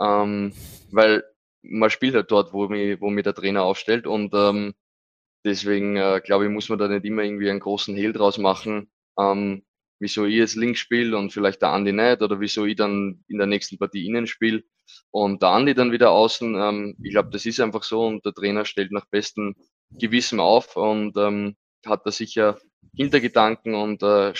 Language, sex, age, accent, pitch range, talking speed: German, male, 20-39, Swiss, 100-110 Hz, 195 wpm